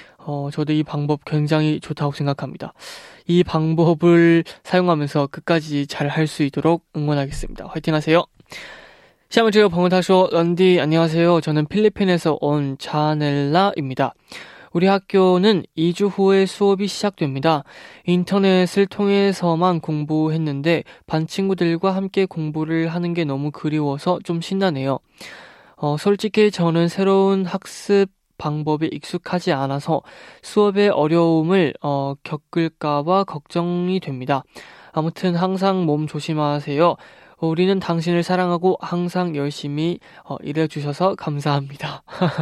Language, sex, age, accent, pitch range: Korean, male, 20-39, native, 150-185 Hz